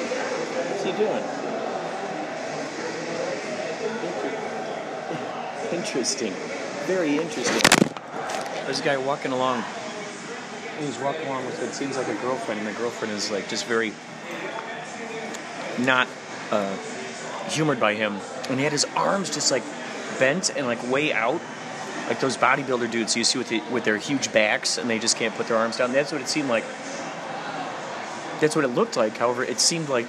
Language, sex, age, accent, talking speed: English, male, 30-49, American, 155 wpm